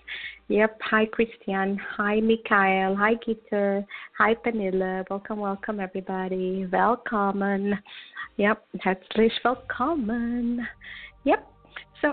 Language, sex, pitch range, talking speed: English, female, 195-245 Hz, 95 wpm